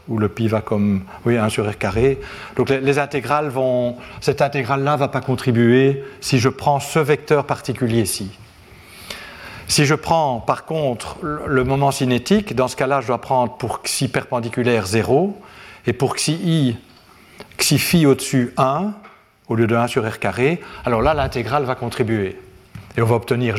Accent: French